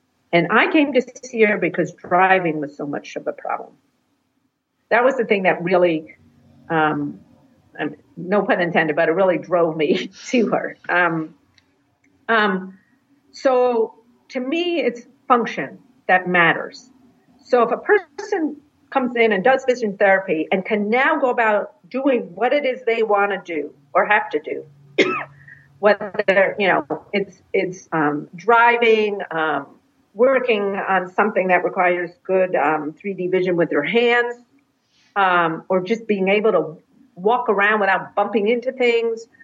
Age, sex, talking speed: 50-69, female, 150 wpm